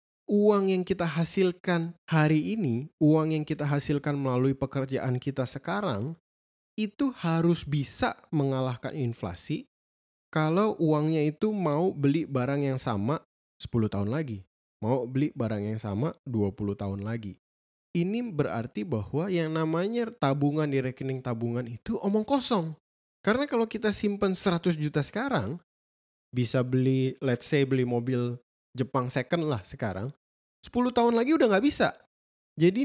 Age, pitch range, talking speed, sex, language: 20-39, 110-165 Hz, 135 wpm, male, Indonesian